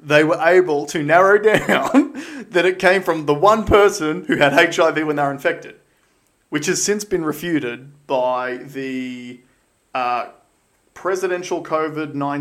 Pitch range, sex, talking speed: 130-170 Hz, male, 145 wpm